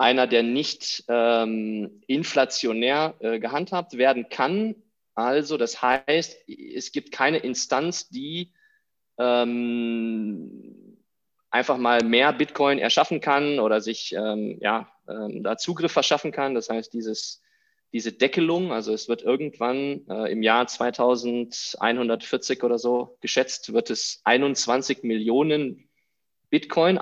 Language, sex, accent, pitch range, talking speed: German, male, German, 115-165 Hz, 115 wpm